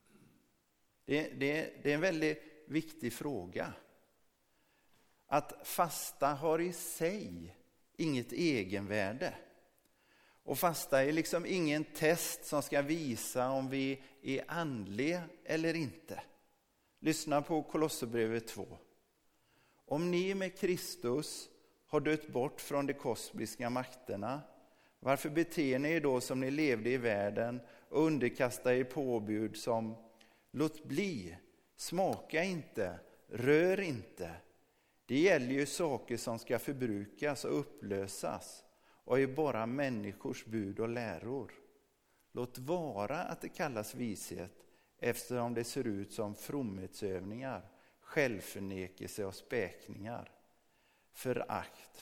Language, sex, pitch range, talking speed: Swedish, male, 115-155 Hz, 110 wpm